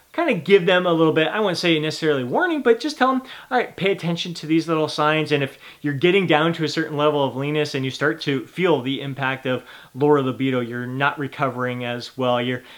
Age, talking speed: 30-49, 240 wpm